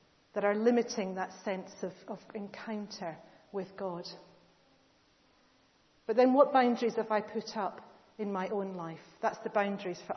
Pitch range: 190-220 Hz